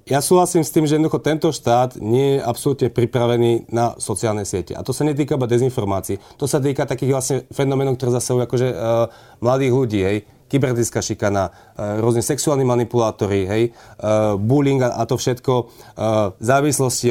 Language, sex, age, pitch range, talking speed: Slovak, male, 30-49, 115-140 Hz, 170 wpm